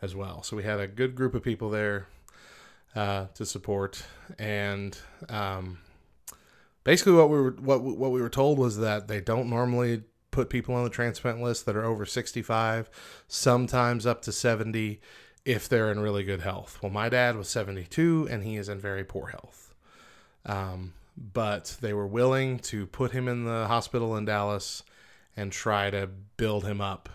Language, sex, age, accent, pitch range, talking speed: English, male, 20-39, American, 100-120 Hz, 185 wpm